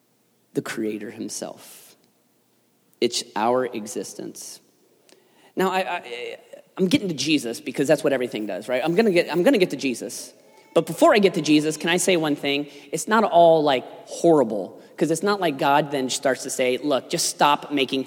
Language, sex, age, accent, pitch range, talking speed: English, male, 30-49, American, 130-185 Hz, 185 wpm